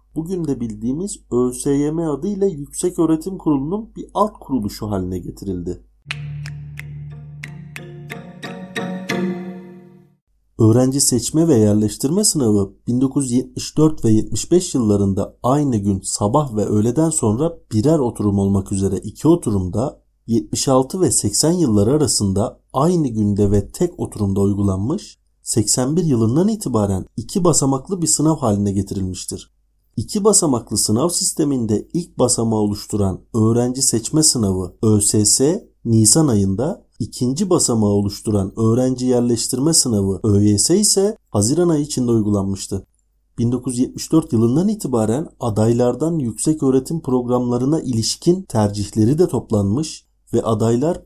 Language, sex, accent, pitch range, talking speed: Turkish, male, native, 105-155 Hz, 105 wpm